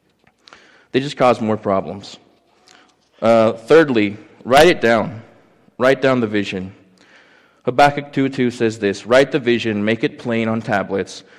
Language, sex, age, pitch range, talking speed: English, male, 20-39, 105-125 Hz, 135 wpm